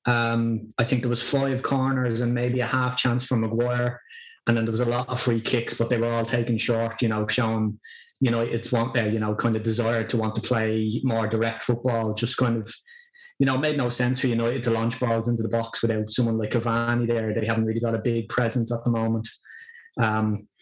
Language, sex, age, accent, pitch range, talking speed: English, male, 20-39, Irish, 115-130 Hz, 235 wpm